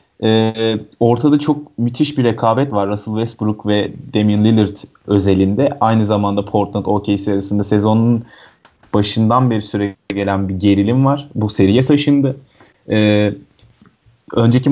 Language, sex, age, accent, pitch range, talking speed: Turkish, male, 30-49, native, 105-140 Hz, 120 wpm